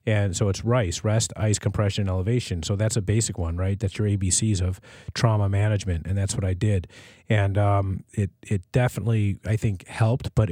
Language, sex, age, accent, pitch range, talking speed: English, male, 30-49, American, 95-110 Hz, 195 wpm